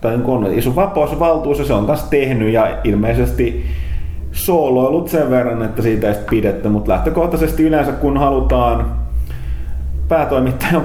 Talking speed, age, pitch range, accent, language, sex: 120 wpm, 30-49, 105-130 Hz, native, Finnish, male